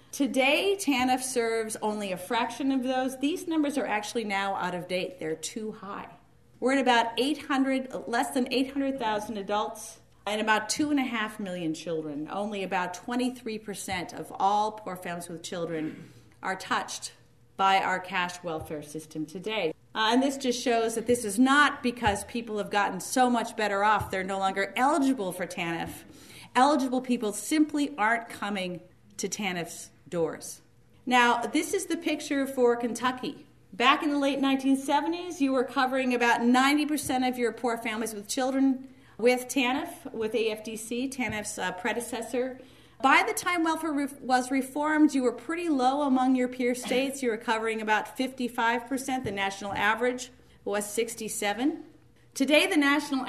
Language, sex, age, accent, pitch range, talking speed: English, female, 40-59, American, 205-265 Hz, 155 wpm